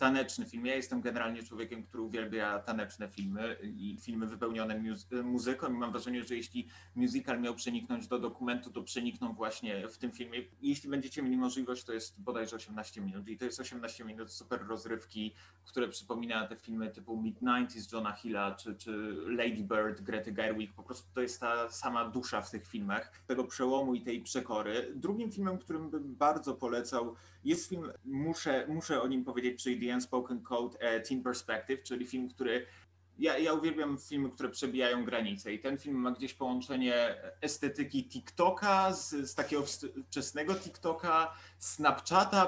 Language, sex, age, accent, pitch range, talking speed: Polish, male, 30-49, native, 115-150 Hz, 165 wpm